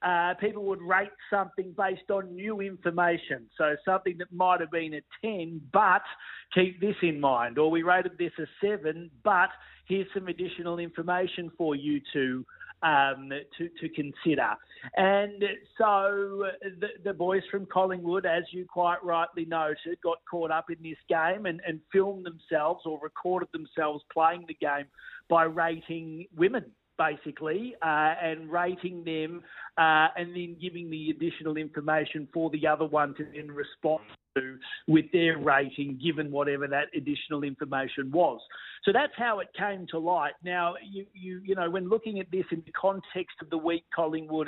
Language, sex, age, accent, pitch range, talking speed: English, male, 50-69, Australian, 155-185 Hz, 165 wpm